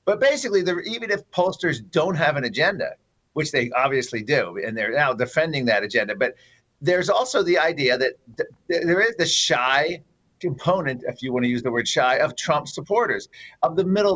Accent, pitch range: American, 135-195 Hz